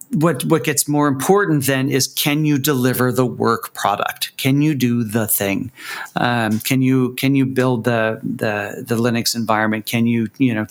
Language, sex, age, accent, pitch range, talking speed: English, male, 40-59, American, 120-145 Hz, 185 wpm